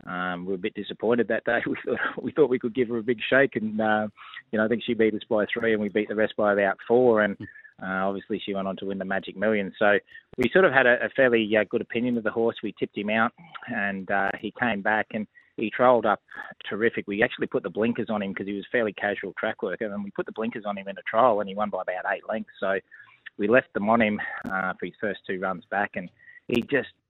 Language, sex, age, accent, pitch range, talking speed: English, male, 20-39, Australian, 95-115 Hz, 275 wpm